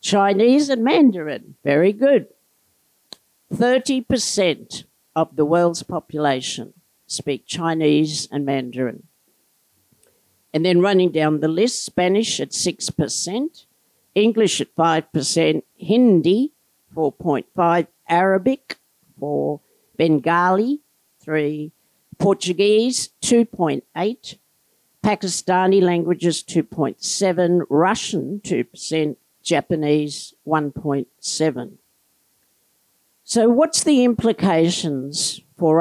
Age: 60-79